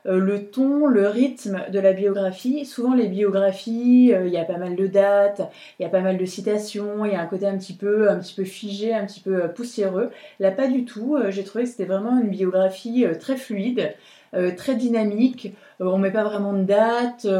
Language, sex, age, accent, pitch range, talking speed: French, female, 20-39, French, 190-240 Hz, 235 wpm